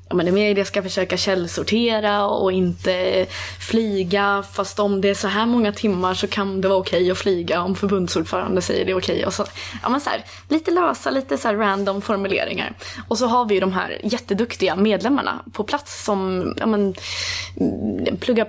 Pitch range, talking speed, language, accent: 185-210 Hz, 180 wpm, Swedish, native